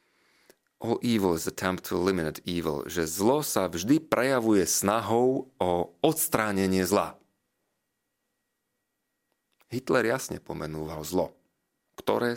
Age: 40-59